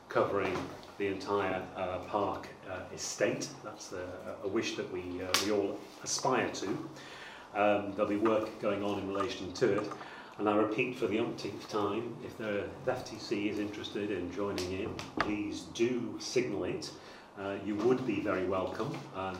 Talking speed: 170 wpm